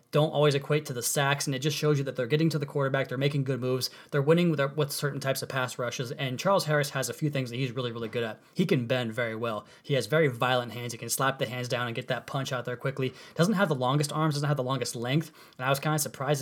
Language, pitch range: English, 130-155 Hz